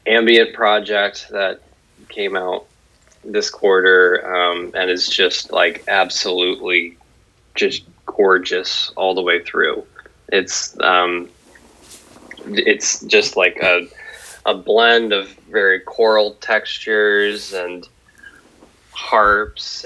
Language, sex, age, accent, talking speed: English, male, 20-39, American, 100 wpm